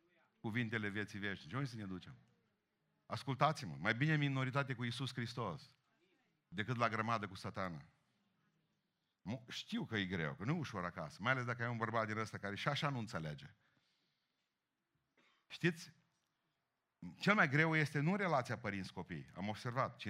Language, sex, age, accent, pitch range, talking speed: Romanian, male, 50-69, native, 115-160 Hz, 160 wpm